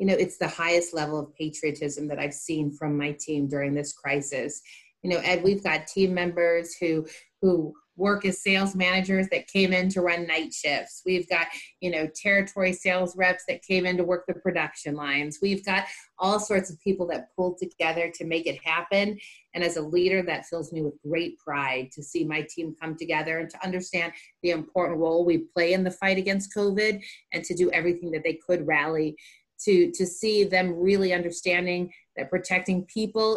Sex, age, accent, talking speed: female, 30-49, American, 200 wpm